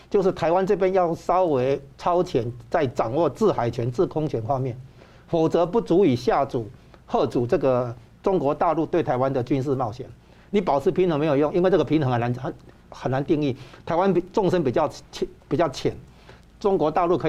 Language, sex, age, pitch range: Chinese, male, 50-69, 130-170 Hz